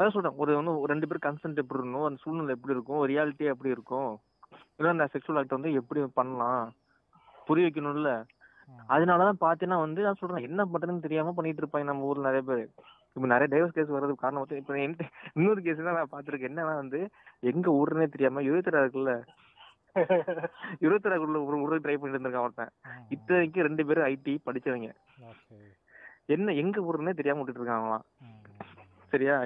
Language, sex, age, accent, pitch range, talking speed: Tamil, male, 20-39, native, 135-165 Hz, 45 wpm